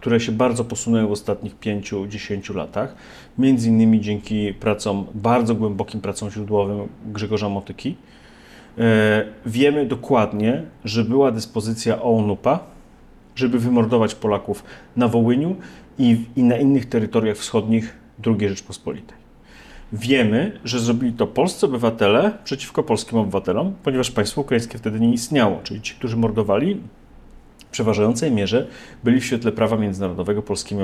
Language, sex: Polish, male